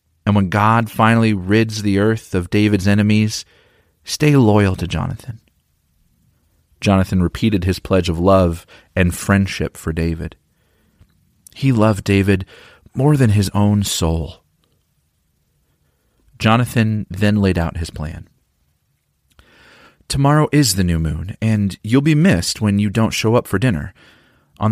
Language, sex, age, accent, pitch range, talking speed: English, male, 30-49, American, 90-120 Hz, 135 wpm